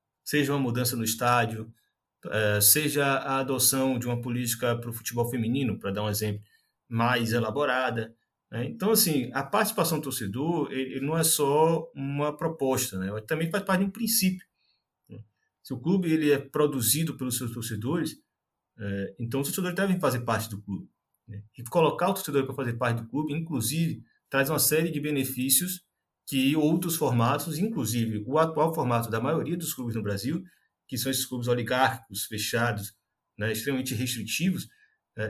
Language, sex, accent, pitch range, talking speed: Portuguese, male, Brazilian, 115-160 Hz, 165 wpm